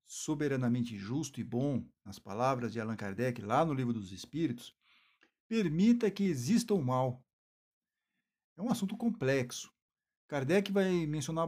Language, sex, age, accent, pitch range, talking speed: Portuguese, male, 60-79, Brazilian, 120-165 Hz, 135 wpm